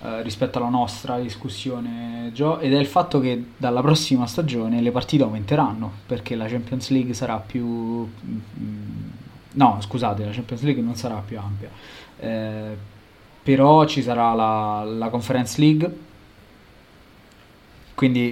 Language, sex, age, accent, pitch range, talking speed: Italian, male, 20-39, native, 110-135 Hz, 130 wpm